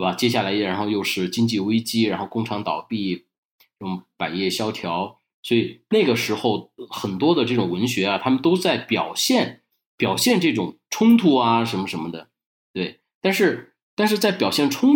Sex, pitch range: male, 100-140 Hz